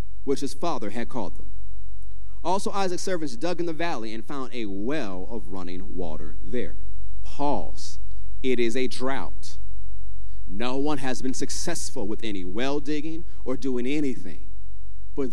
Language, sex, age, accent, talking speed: English, male, 30-49, American, 155 wpm